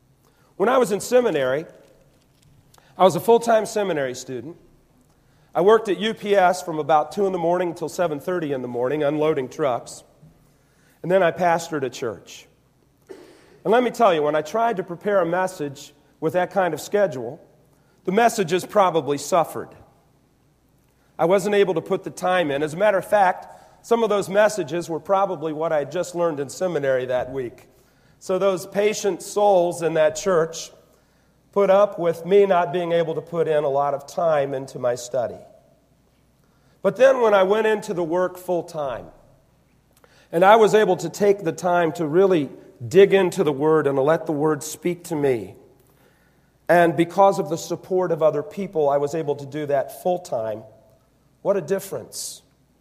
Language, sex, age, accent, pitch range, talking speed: English, male, 40-59, American, 150-195 Hz, 180 wpm